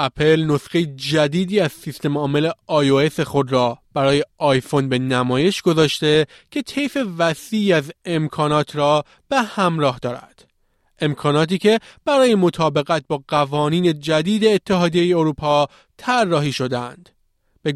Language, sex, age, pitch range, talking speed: Persian, male, 30-49, 145-195 Hz, 120 wpm